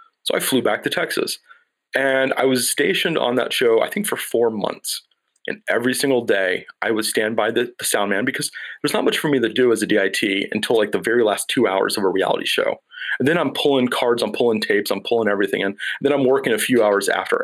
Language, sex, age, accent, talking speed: English, male, 30-49, American, 245 wpm